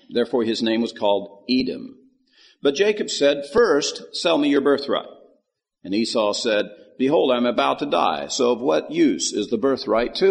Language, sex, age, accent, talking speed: English, male, 50-69, American, 175 wpm